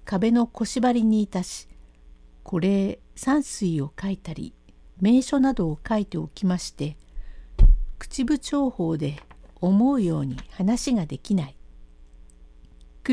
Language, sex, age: Japanese, female, 60-79